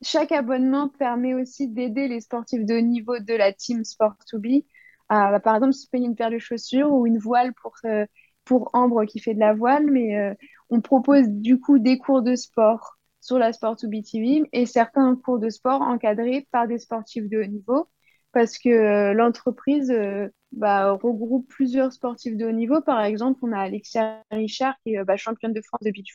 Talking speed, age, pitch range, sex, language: 200 wpm, 20-39, 215-255 Hz, female, French